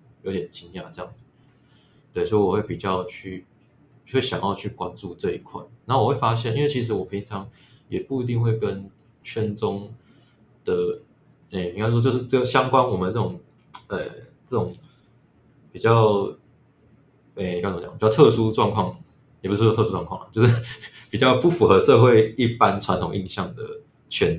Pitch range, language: 100-120 Hz, Chinese